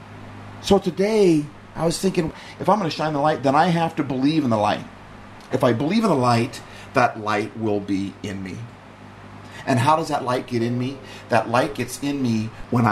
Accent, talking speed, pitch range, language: American, 215 wpm, 100-115 Hz, English